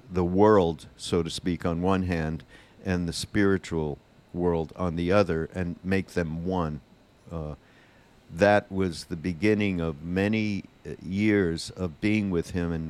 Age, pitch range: 50-69, 85-100 Hz